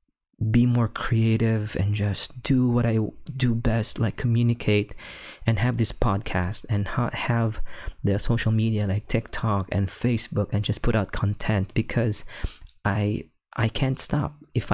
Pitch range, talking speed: 100-115 Hz, 150 wpm